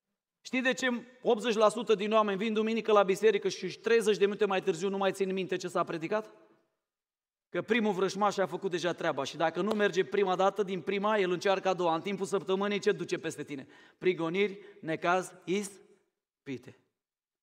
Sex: male